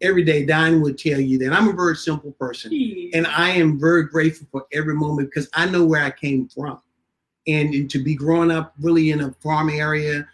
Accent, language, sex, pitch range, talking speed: American, English, male, 145-175 Hz, 220 wpm